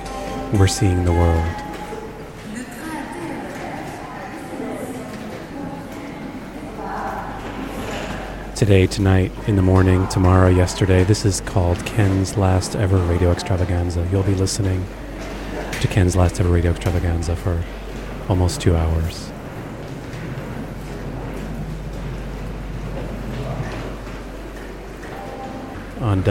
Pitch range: 90-100 Hz